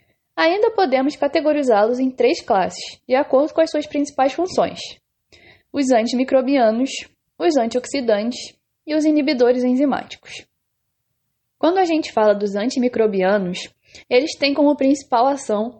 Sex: female